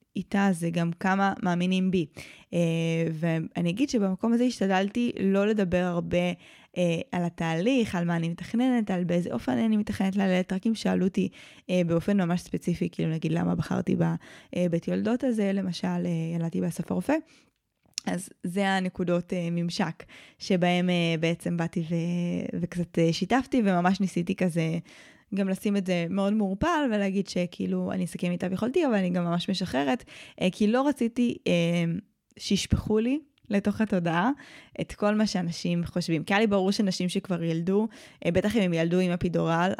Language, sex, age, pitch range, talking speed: Hebrew, female, 20-39, 170-205 Hz, 155 wpm